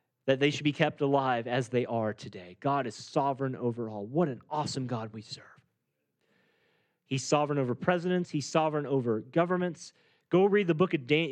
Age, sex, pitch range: 30-49, male, 145-200 Hz